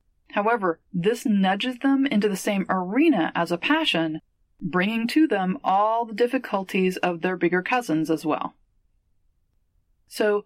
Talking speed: 140 wpm